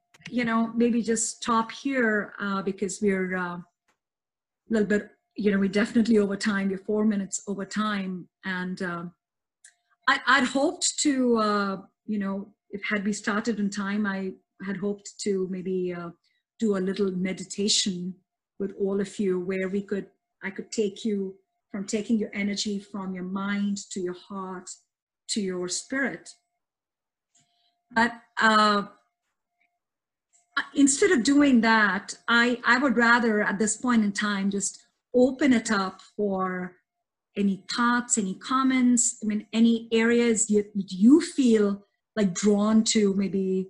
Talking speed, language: 150 wpm, English